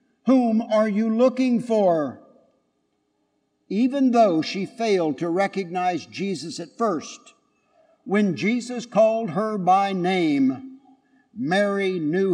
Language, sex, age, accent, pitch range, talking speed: English, male, 60-79, American, 180-255 Hz, 105 wpm